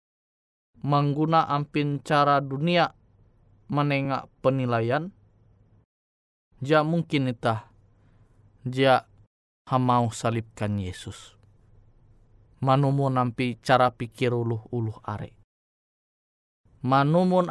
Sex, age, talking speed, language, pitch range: male, 20-39, 70 wpm, Indonesian, 110-165 Hz